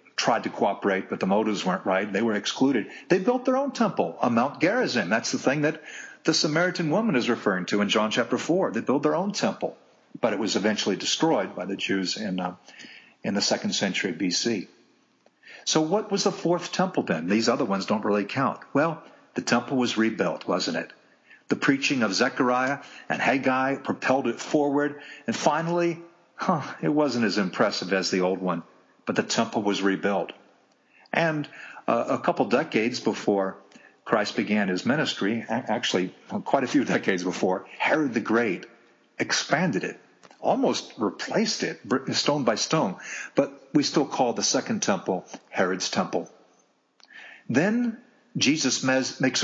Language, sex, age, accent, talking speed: English, male, 50-69, American, 165 wpm